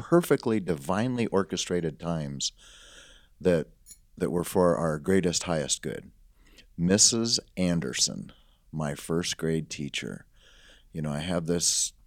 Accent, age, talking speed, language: American, 40-59, 115 wpm, English